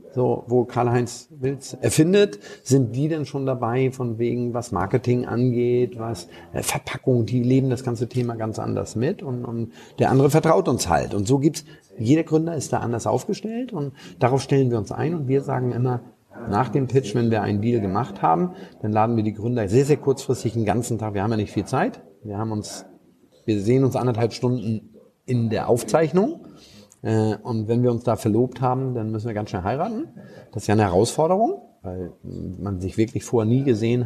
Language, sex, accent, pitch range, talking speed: German, male, German, 110-130 Hz, 200 wpm